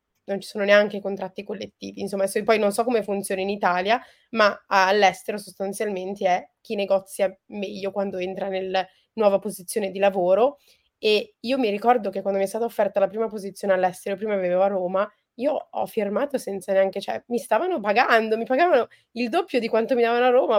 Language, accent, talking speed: Italian, native, 190 wpm